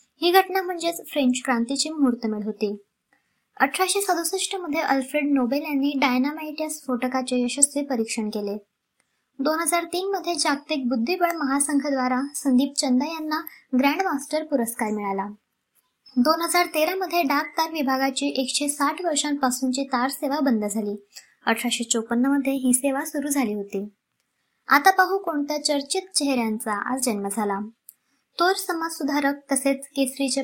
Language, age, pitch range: Marathi, 20-39, 250-310 Hz